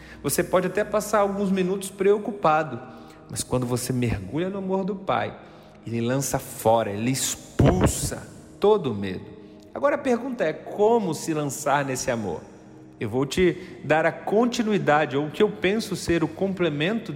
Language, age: Portuguese, 40-59